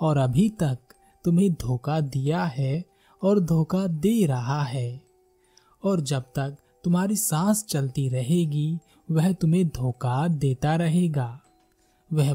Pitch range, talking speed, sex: 135-180 Hz, 120 wpm, male